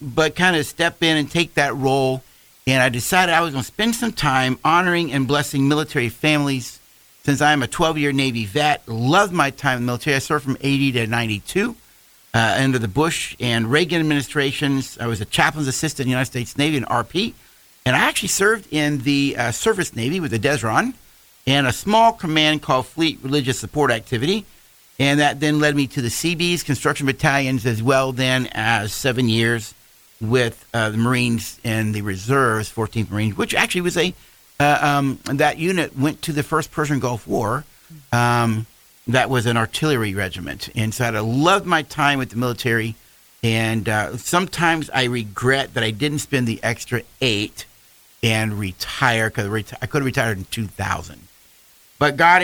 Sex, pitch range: male, 115-150 Hz